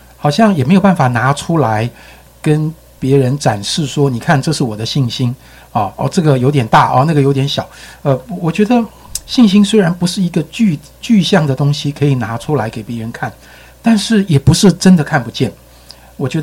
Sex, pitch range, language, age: male, 125-185 Hz, Chinese, 60-79